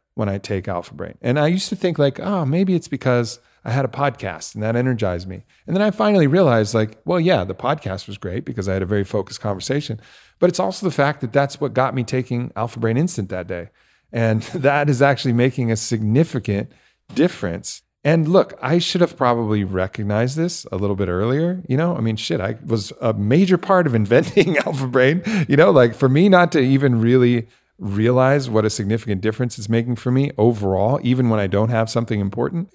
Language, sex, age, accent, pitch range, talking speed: English, male, 40-59, American, 105-135 Hz, 215 wpm